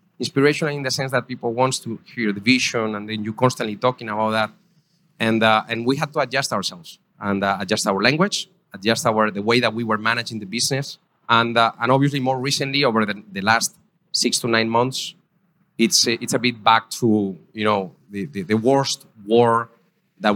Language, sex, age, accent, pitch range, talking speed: English, male, 30-49, Spanish, 105-130 Hz, 205 wpm